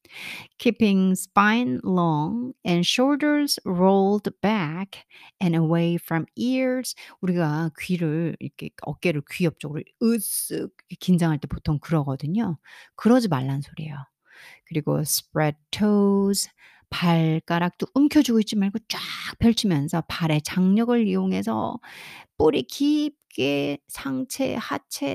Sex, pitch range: female, 160-220 Hz